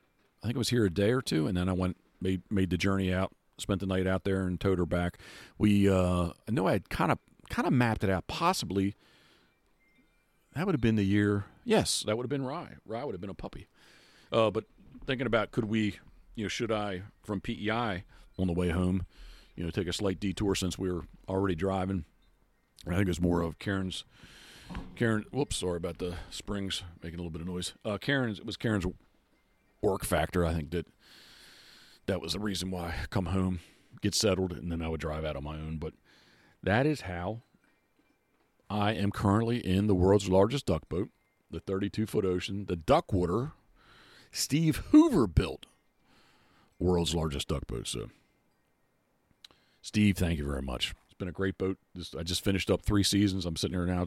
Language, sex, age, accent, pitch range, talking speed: English, male, 40-59, American, 90-105 Hz, 200 wpm